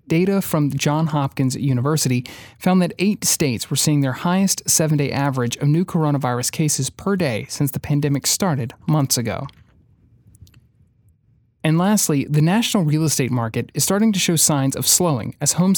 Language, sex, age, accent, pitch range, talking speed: English, male, 30-49, American, 130-180 Hz, 165 wpm